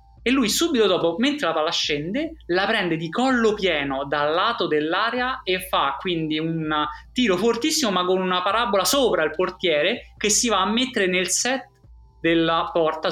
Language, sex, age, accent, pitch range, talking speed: Italian, male, 20-39, native, 145-195 Hz, 175 wpm